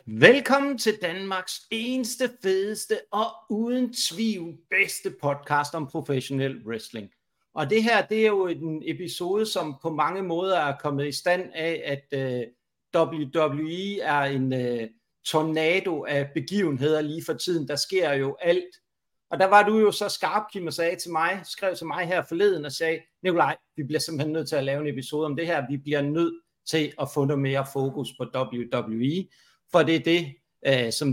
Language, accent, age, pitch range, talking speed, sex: Danish, native, 60-79, 140-185 Hz, 175 wpm, male